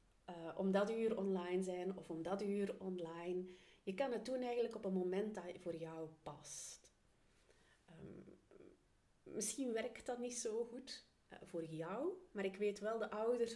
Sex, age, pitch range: female, 30-49, 170-215 Hz